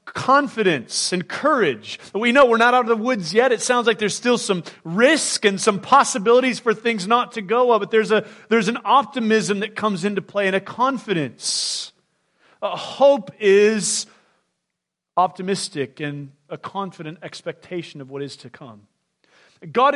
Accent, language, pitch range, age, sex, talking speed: American, English, 185-230 Hz, 40-59, male, 160 wpm